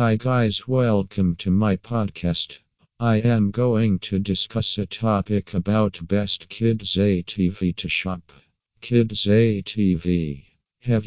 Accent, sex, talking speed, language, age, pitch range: American, male, 120 wpm, English, 50-69, 95-110 Hz